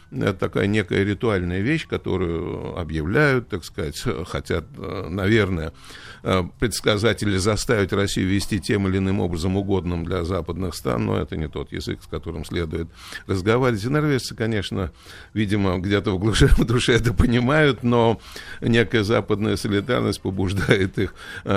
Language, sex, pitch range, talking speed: Russian, male, 90-110 Hz, 135 wpm